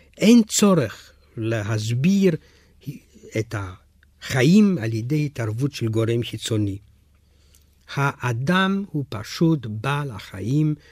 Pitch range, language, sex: 90-145 Hz, Hebrew, male